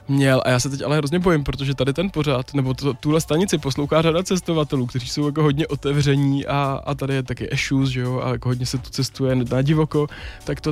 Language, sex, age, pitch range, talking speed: Czech, male, 20-39, 135-155 Hz, 235 wpm